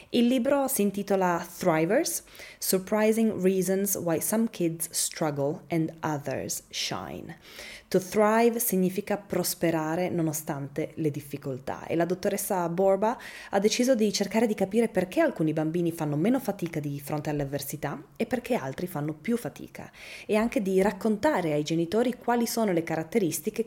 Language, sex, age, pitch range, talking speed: Italian, female, 20-39, 150-190 Hz, 145 wpm